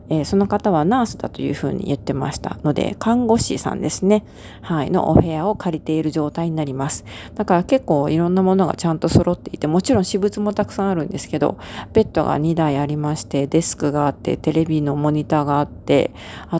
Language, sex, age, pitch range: Japanese, female, 40-59, 150-190 Hz